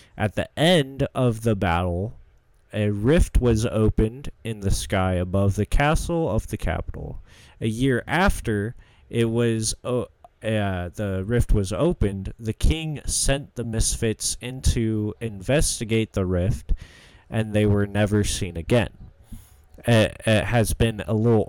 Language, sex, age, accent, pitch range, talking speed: English, male, 20-39, American, 100-125 Hz, 145 wpm